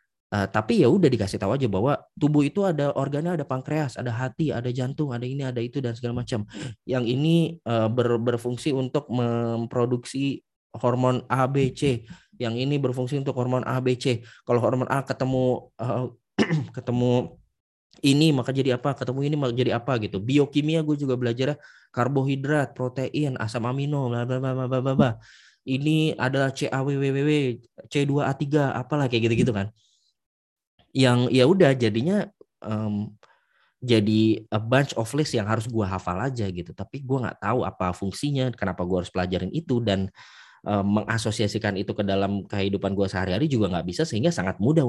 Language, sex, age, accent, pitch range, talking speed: Indonesian, male, 20-39, native, 105-135 Hz, 170 wpm